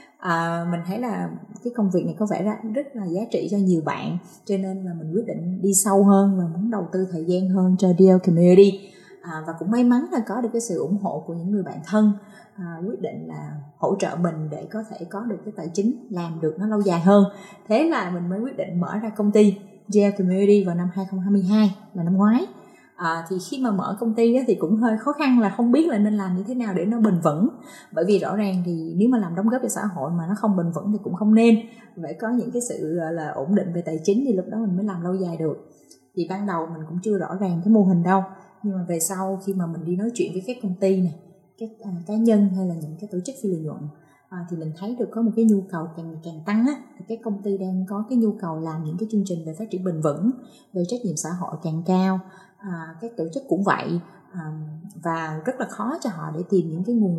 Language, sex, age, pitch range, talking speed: Vietnamese, female, 20-39, 175-215 Hz, 270 wpm